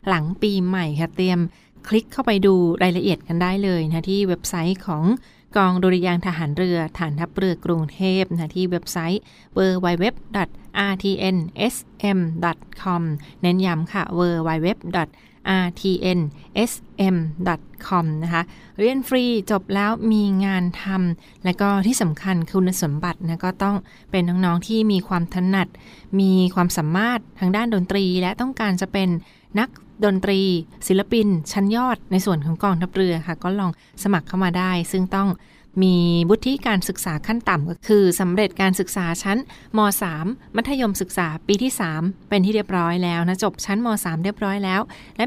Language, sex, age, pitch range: Thai, female, 20-39, 175-200 Hz